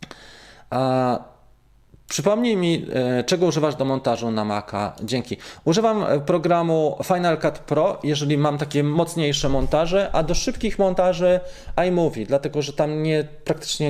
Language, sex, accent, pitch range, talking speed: Polish, male, native, 130-160 Hz, 130 wpm